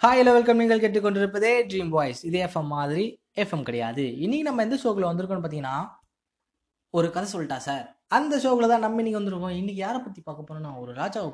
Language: Tamil